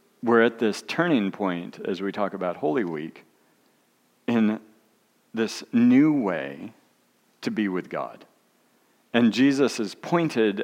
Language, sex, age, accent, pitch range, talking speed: English, male, 50-69, American, 95-130 Hz, 130 wpm